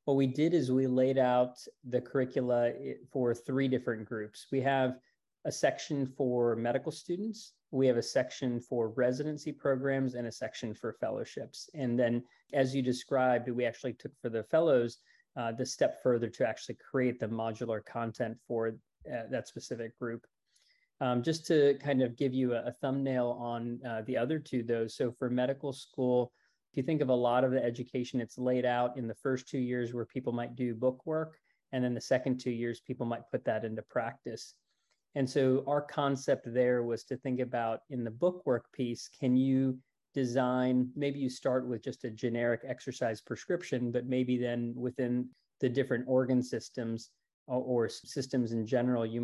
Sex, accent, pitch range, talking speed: male, American, 115-130 Hz, 185 wpm